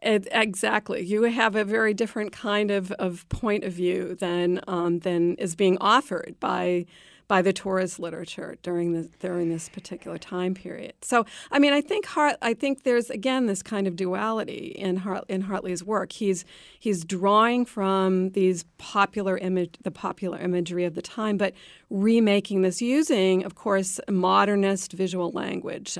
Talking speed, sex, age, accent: 165 wpm, female, 40-59, American